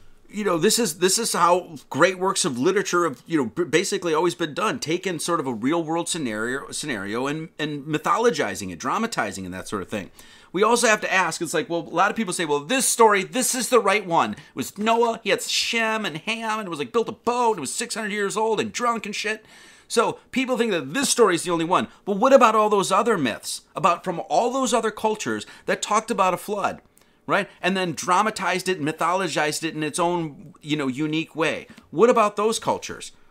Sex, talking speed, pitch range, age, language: male, 235 wpm, 165-220 Hz, 30-49, English